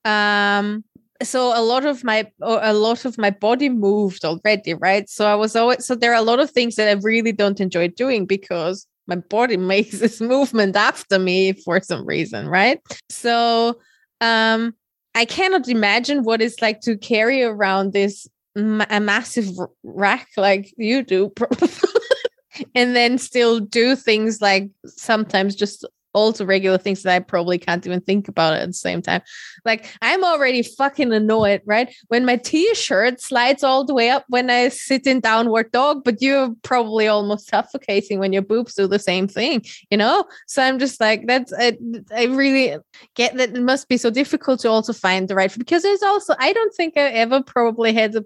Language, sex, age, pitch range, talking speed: English, female, 20-39, 205-255 Hz, 185 wpm